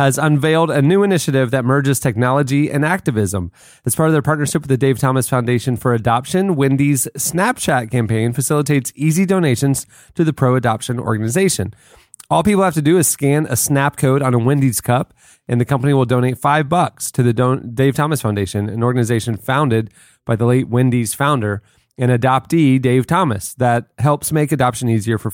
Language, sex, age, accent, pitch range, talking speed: English, male, 30-49, American, 115-145 Hz, 180 wpm